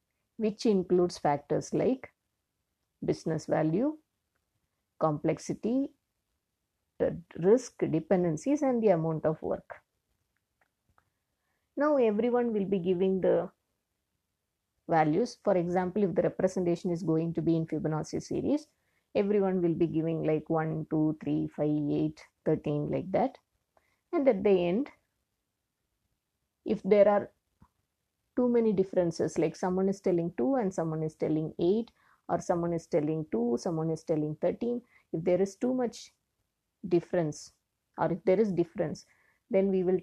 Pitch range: 160-195 Hz